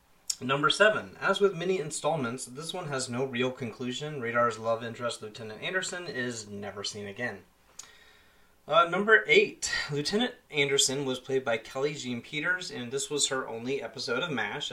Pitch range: 120-190 Hz